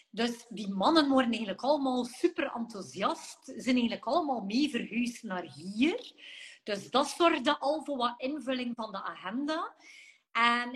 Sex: female